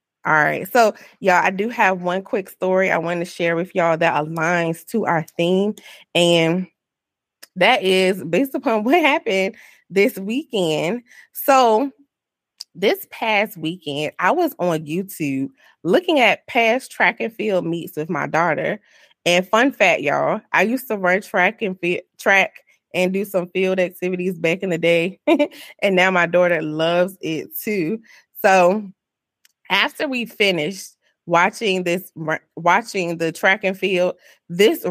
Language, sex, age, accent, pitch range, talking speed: English, female, 20-39, American, 175-220 Hz, 150 wpm